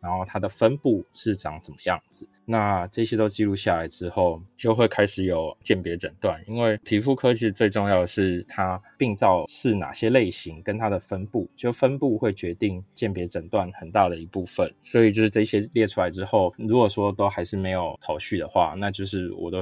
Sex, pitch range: male, 90-105 Hz